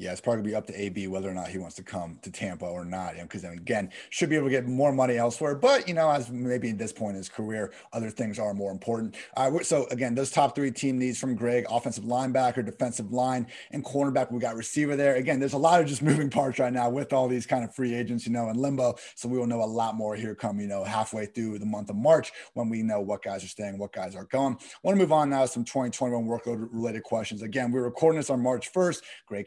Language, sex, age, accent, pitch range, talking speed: English, male, 30-49, American, 110-135 Hz, 275 wpm